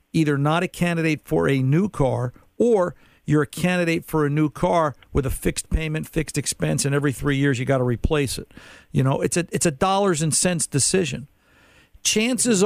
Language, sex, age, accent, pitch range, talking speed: English, male, 50-69, American, 130-160 Hz, 200 wpm